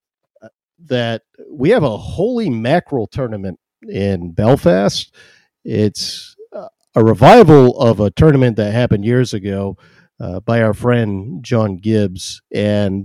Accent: American